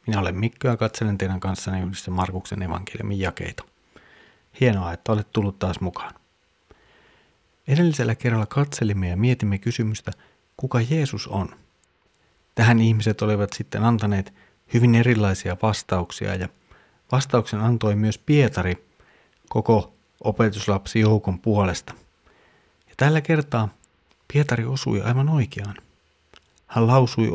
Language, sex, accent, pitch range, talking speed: Finnish, male, native, 95-115 Hz, 110 wpm